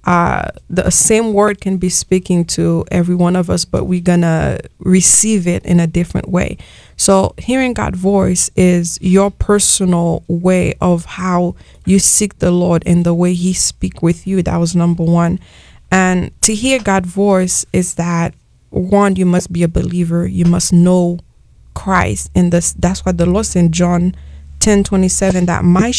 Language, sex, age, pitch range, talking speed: English, female, 20-39, 175-190 Hz, 175 wpm